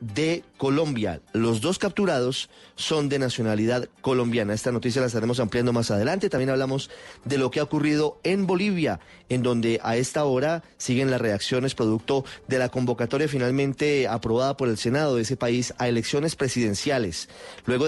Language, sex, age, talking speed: Spanish, male, 30-49, 165 wpm